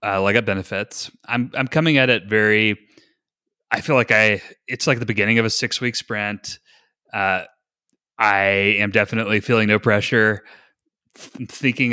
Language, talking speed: English, 165 wpm